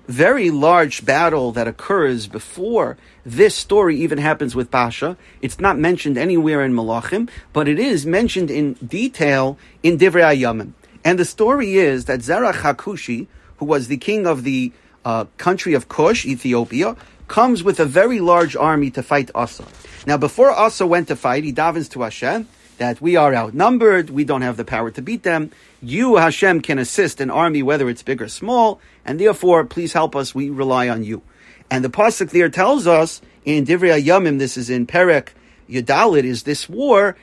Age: 40-59